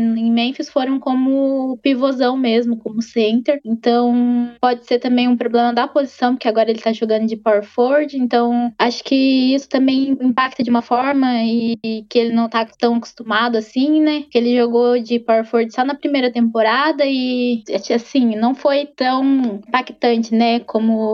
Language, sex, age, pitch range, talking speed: Portuguese, female, 10-29, 235-275 Hz, 175 wpm